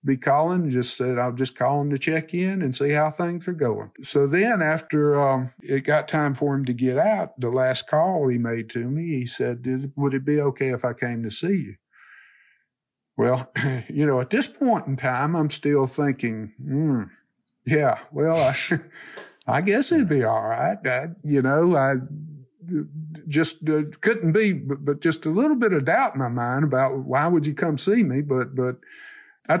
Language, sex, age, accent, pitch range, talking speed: English, male, 50-69, American, 130-155 Hz, 200 wpm